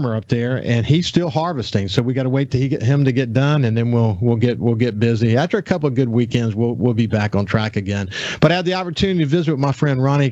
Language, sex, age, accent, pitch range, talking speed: English, male, 50-69, American, 115-140 Hz, 285 wpm